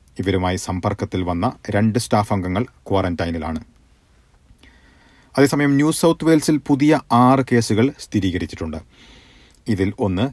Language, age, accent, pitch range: Malayalam, 40-59, native, 95-125 Hz